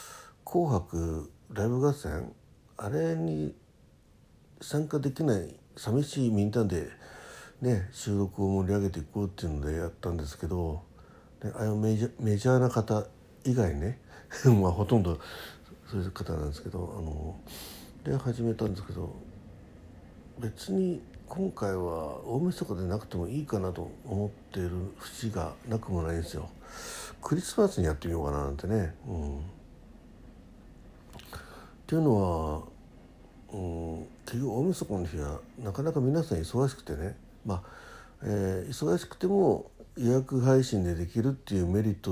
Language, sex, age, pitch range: Japanese, male, 60-79, 85-120 Hz